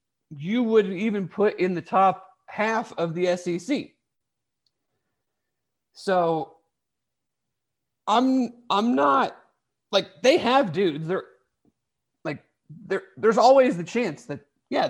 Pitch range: 145-190 Hz